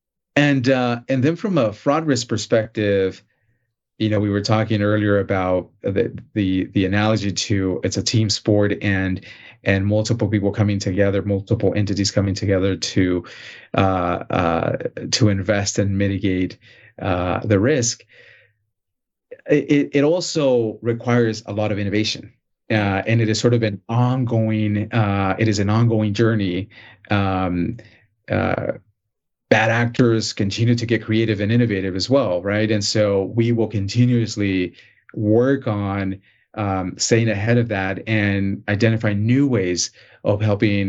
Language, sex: English, male